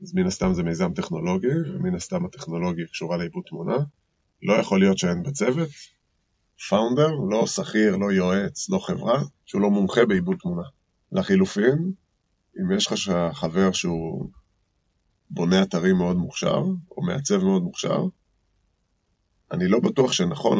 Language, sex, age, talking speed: Hebrew, male, 20-39, 135 wpm